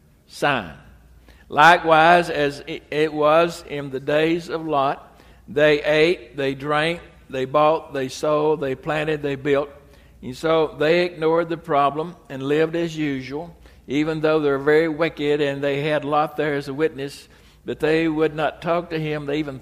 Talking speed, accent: 170 wpm, American